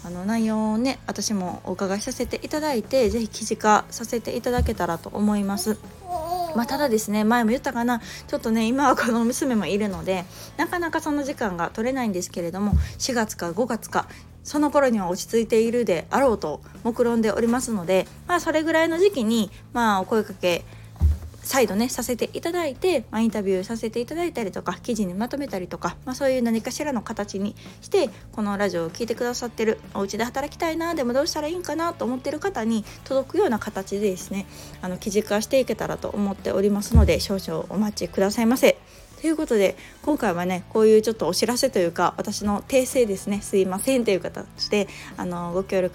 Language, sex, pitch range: Japanese, female, 195-260 Hz